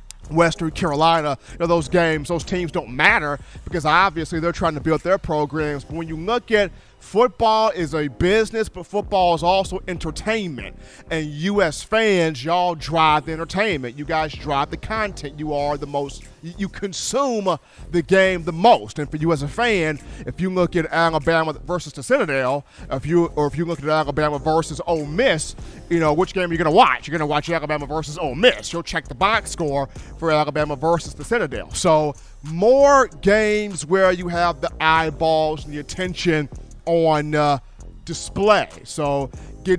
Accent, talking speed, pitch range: American, 180 wpm, 150-195 Hz